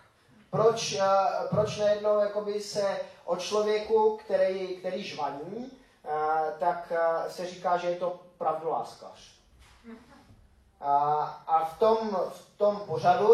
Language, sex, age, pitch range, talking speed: Czech, male, 20-39, 155-205 Hz, 105 wpm